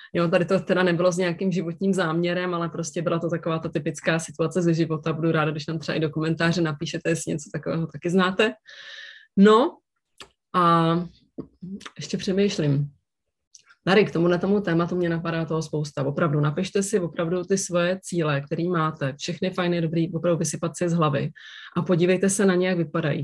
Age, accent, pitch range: 20-39, native, 165-195 Hz